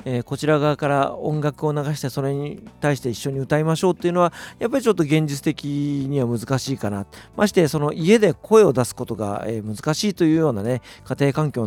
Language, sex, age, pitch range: Japanese, male, 40-59, 105-165 Hz